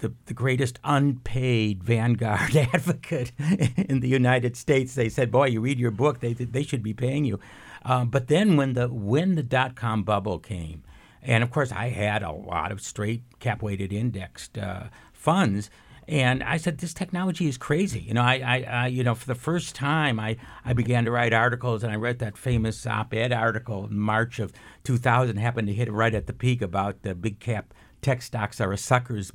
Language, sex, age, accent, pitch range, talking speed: English, male, 60-79, American, 110-140 Hz, 200 wpm